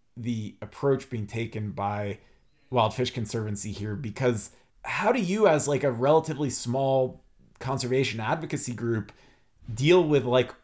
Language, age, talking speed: English, 30-49, 135 wpm